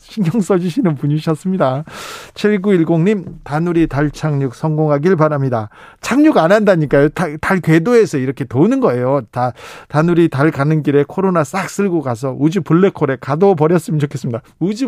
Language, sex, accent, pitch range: Korean, male, native, 145-195 Hz